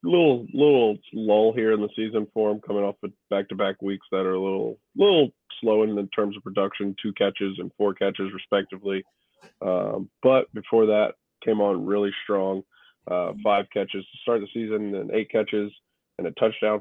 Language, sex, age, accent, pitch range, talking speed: English, male, 20-39, American, 95-105 Hz, 185 wpm